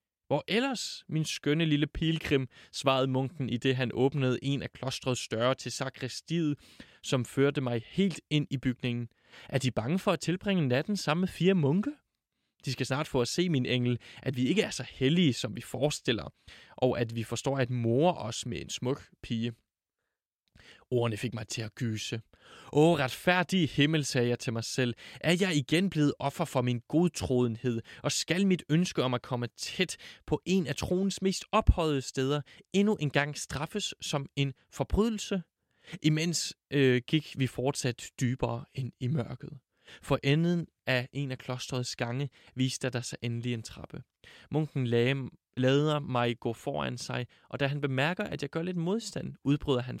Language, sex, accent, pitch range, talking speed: Danish, male, native, 125-155 Hz, 175 wpm